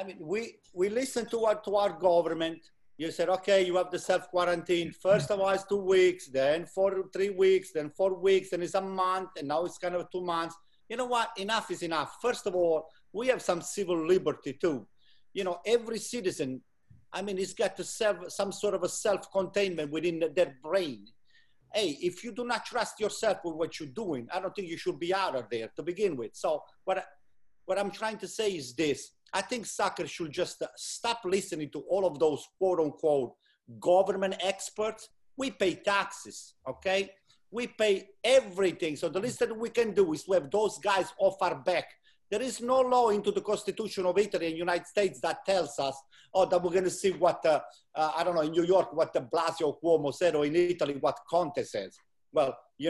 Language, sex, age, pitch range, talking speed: English, male, 50-69, 165-200 Hz, 210 wpm